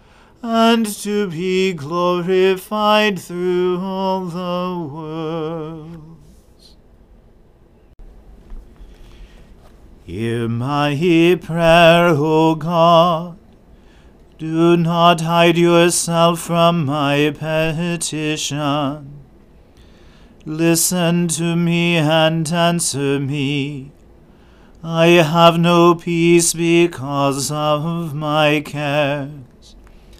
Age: 40-59